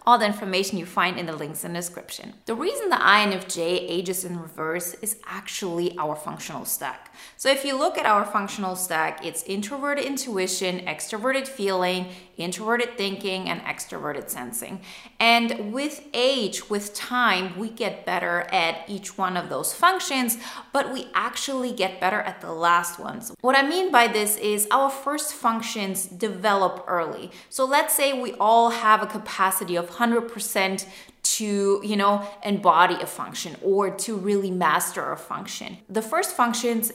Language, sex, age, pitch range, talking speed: English, female, 20-39, 185-240 Hz, 165 wpm